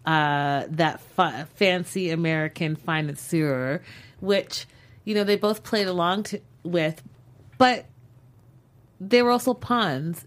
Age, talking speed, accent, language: 30-49, 115 wpm, American, English